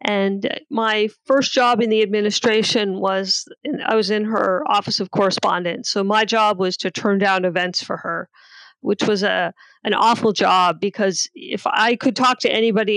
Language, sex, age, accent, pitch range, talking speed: English, female, 40-59, American, 200-250 Hz, 175 wpm